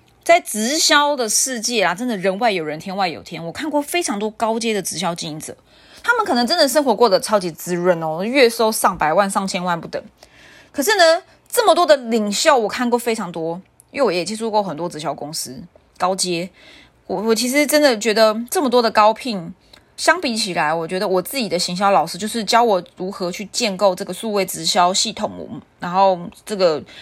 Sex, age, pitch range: female, 20-39, 180-240 Hz